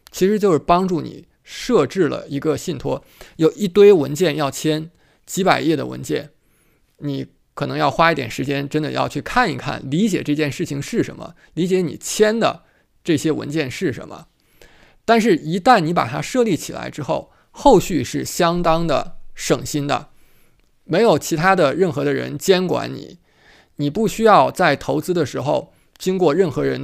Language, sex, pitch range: Chinese, male, 145-185 Hz